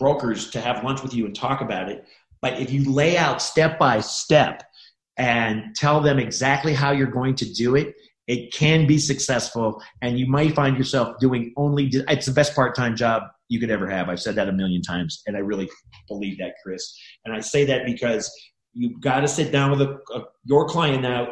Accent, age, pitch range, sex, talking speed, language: American, 40-59, 120-150 Hz, male, 215 wpm, English